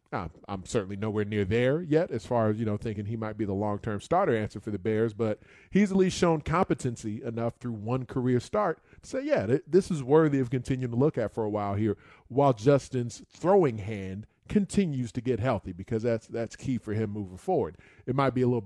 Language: English